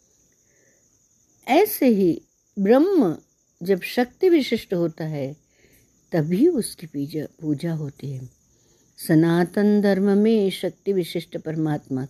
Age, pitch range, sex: 60-79, 160-230 Hz, female